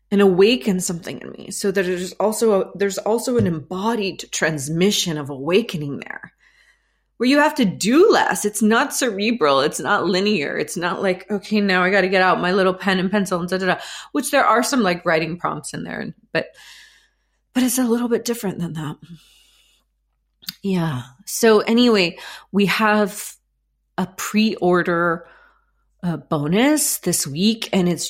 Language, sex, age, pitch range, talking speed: English, female, 30-49, 170-215 Hz, 170 wpm